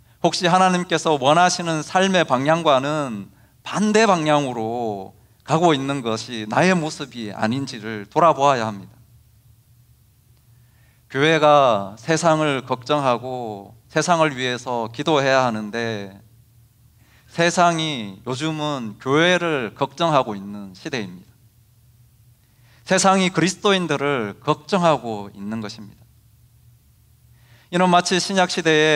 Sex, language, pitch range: male, Korean, 115-160 Hz